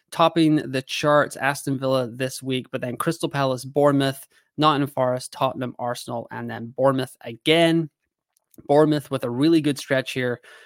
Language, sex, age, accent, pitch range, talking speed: English, male, 20-39, American, 125-145 Hz, 150 wpm